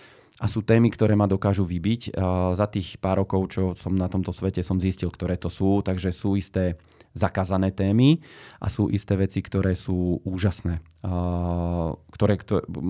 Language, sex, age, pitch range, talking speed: Slovak, male, 20-39, 90-105 Hz, 170 wpm